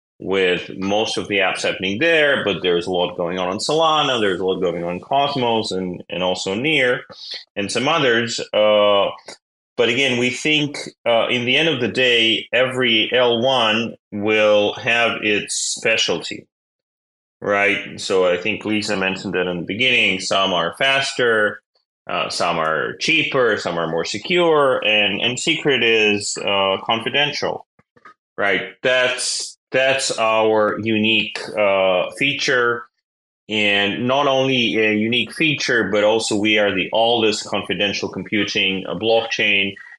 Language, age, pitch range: English, 30-49, 95-120 Hz